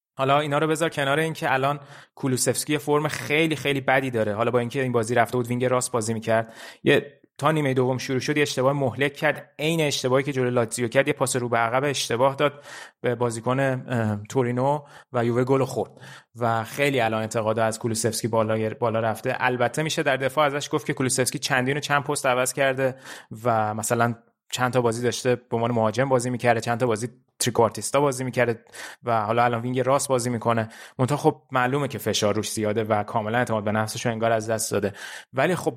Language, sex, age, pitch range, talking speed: Persian, male, 30-49, 115-145 Hz, 200 wpm